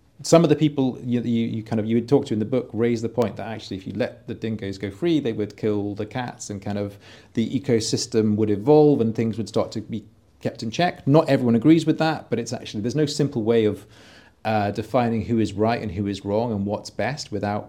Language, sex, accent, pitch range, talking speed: English, male, British, 100-130 Hz, 255 wpm